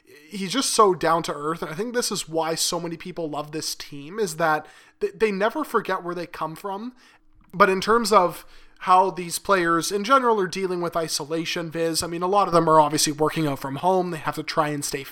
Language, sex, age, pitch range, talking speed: English, male, 20-39, 160-190 Hz, 235 wpm